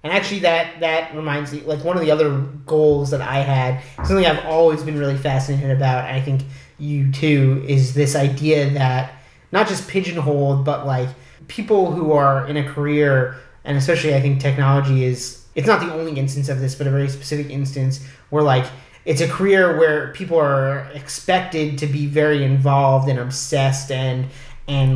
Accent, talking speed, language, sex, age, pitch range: American, 185 wpm, English, male, 30-49, 135-155 Hz